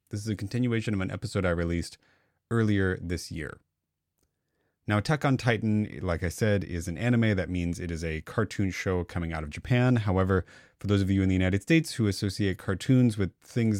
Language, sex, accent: English, male, American